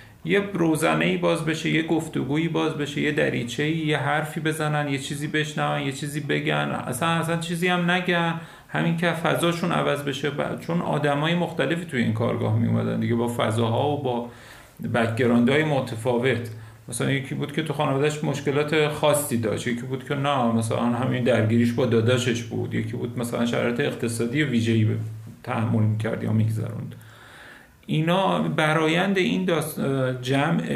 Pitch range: 120-160 Hz